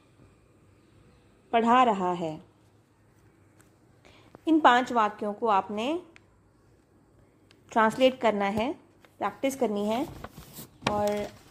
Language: Hindi